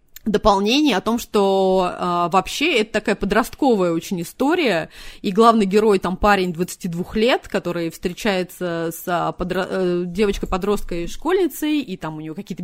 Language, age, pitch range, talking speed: Russian, 20-39, 190-250 Hz, 135 wpm